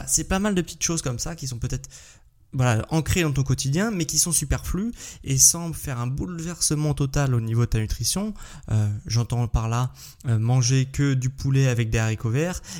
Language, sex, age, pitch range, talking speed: French, male, 20-39, 120-145 Hz, 205 wpm